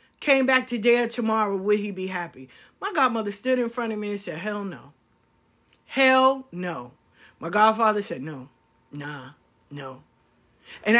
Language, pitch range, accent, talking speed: English, 160-235 Hz, American, 160 wpm